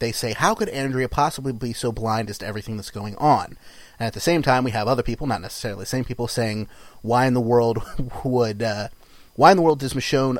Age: 30-49